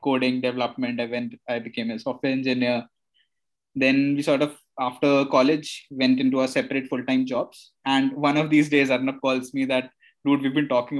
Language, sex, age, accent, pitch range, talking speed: English, male, 20-39, Indian, 130-150 Hz, 185 wpm